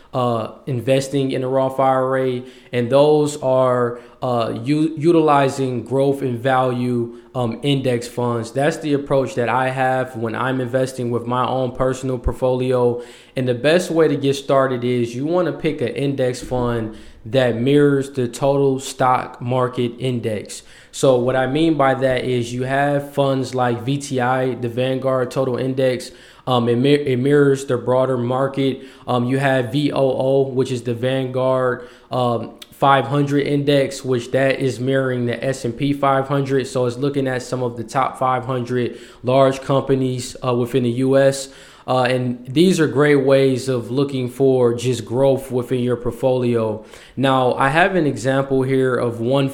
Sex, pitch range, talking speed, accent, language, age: male, 125-135 Hz, 160 wpm, American, English, 20-39